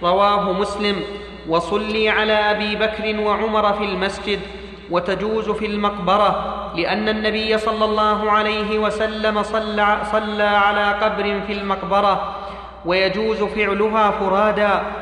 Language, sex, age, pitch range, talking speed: Arabic, male, 30-49, 205-215 Hz, 105 wpm